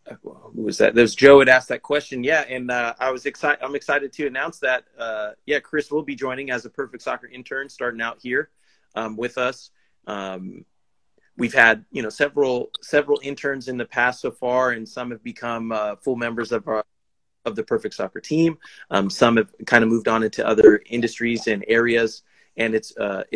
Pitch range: 115-135 Hz